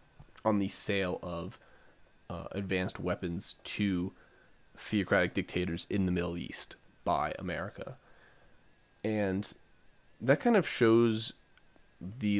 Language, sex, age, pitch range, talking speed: English, male, 20-39, 90-110 Hz, 105 wpm